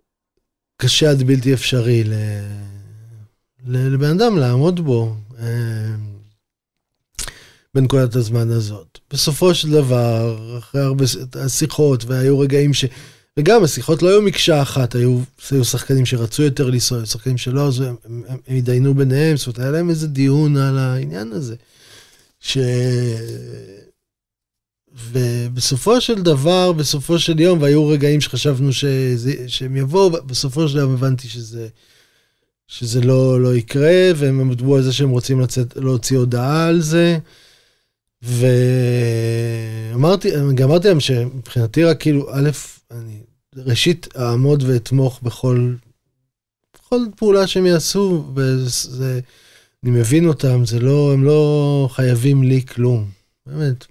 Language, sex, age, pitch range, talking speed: Hebrew, male, 20-39, 125-155 Hz, 125 wpm